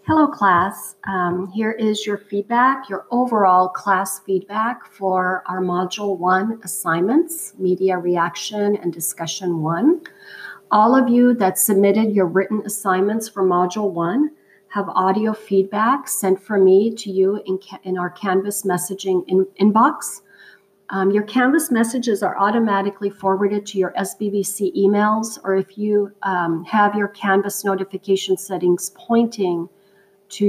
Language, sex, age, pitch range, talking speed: English, female, 40-59, 185-215 Hz, 135 wpm